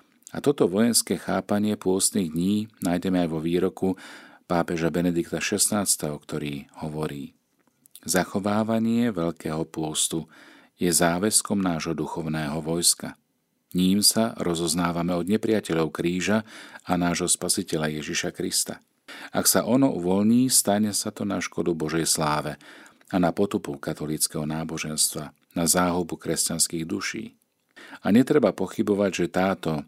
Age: 40-59